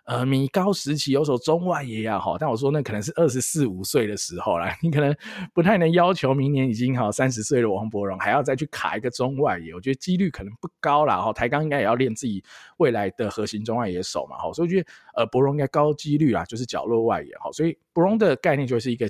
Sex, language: male, Chinese